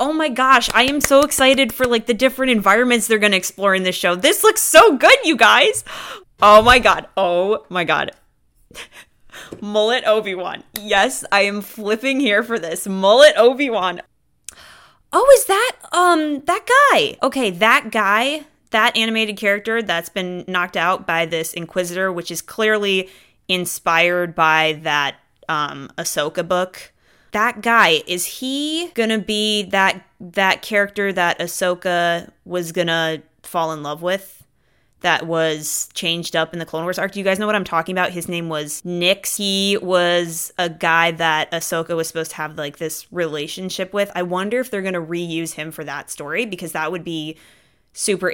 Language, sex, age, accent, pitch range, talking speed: English, female, 20-39, American, 165-220 Hz, 170 wpm